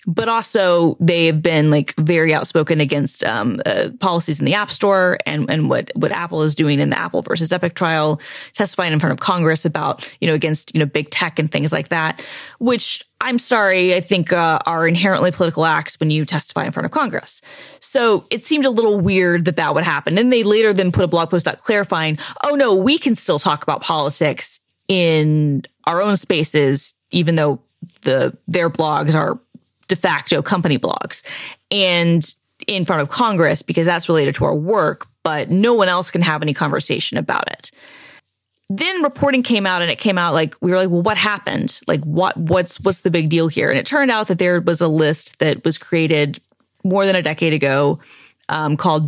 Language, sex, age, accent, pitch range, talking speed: English, female, 20-39, American, 155-190 Hz, 205 wpm